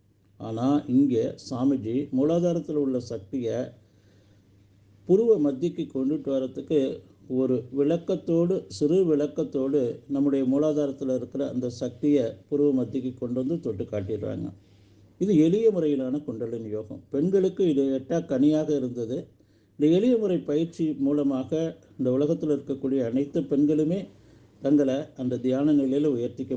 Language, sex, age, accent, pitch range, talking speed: Tamil, male, 50-69, native, 120-155 Hz, 110 wpm